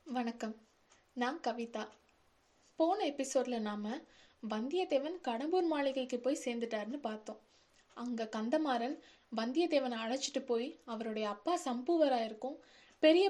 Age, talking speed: 20-39, 95 wpm